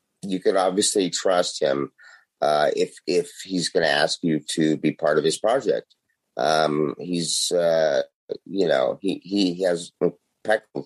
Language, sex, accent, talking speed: English, male, American, 150 wpm